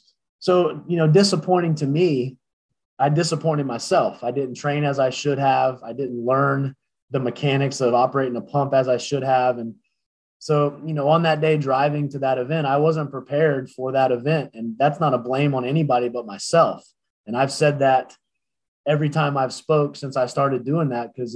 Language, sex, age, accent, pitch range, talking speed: English, male, 20-39, American, 130-150 Hz, 195 wpm